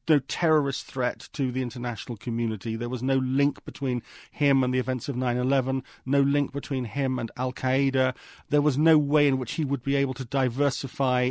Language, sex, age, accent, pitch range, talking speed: English, male, 40-59, British, 125-145 Hz, 190 wpm